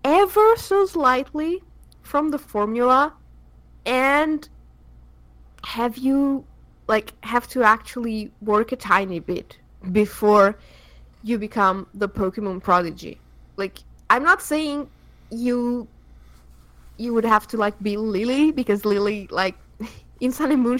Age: 20-39